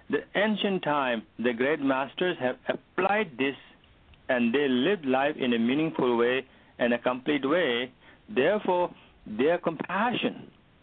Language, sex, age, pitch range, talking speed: English, male, 60-79, 125-205 Hz, 135 wpm